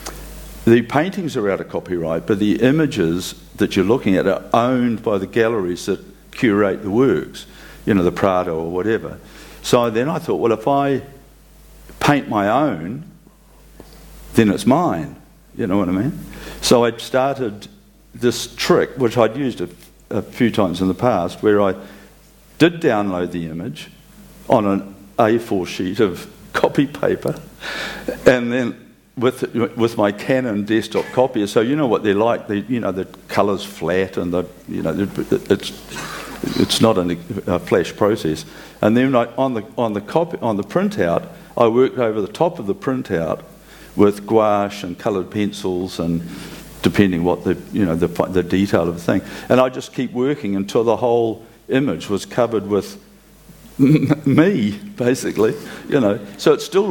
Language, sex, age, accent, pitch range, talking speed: English, male, 50-69, Australian, 95-130 Hz, 170 wpm